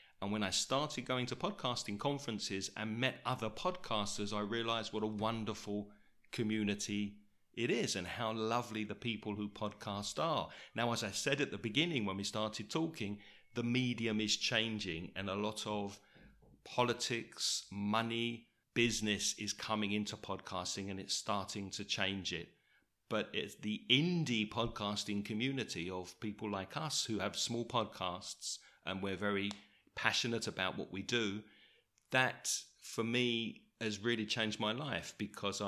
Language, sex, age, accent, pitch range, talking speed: English, male, 40-59, British, 105-125 Hz, 155 wpm